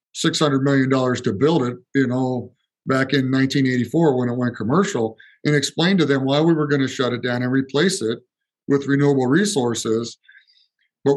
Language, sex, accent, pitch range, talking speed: English, male, American, 125-145 Hz, 170 wpm